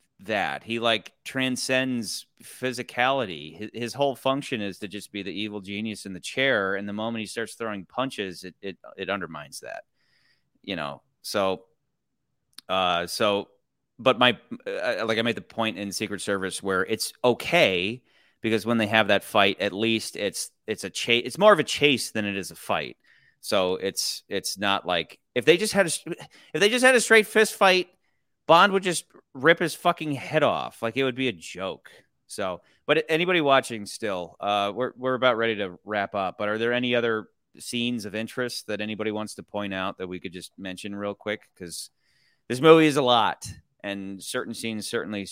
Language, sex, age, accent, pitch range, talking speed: English, male, 30-49, American, 100-130 Hz, 195 wpm